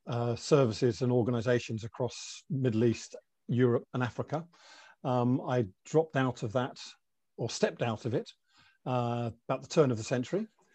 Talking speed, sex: 155 wpm, male